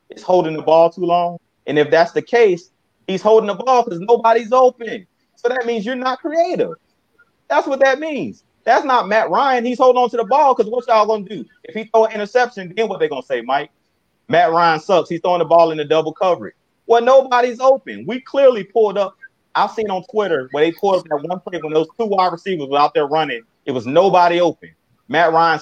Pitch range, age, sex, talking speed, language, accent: 155-235 Hz, 30-49, male, 235 wpm, English, American